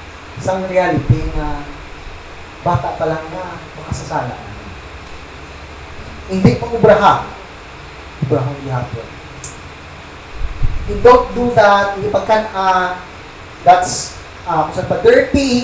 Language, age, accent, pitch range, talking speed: English, 20-39, Filipino, 150-220 Hz, 115 wpm